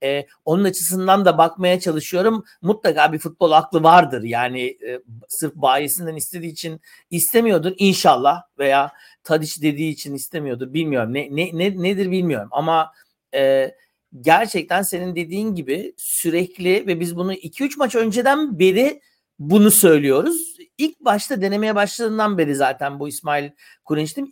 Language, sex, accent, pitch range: Turkish, male, native, 155-205 Hz